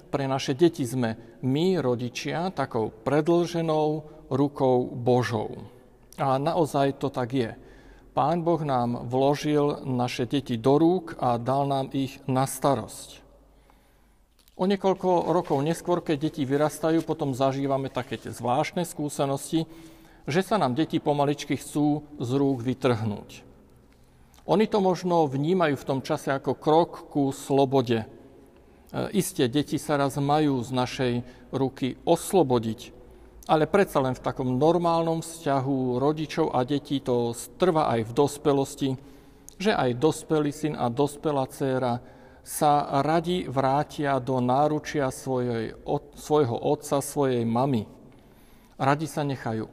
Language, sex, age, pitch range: Slovak, male, 50-69, 130-160 Hz